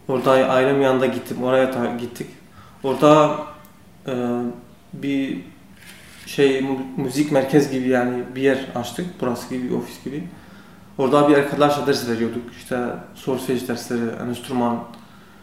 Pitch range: 120-150 Hz